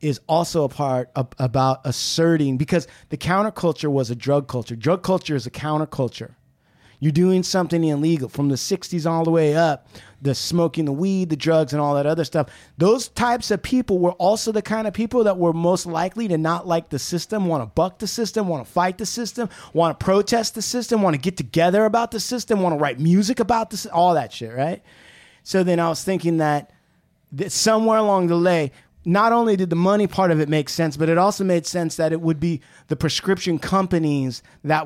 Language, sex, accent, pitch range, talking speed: English, male, American, 150-210 Hz, 210 wpm